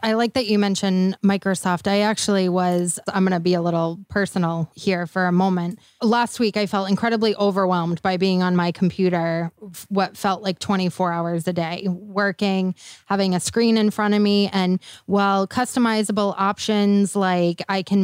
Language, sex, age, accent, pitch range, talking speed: English, female, 20-39, American, 185-210 Hz, 175 wpm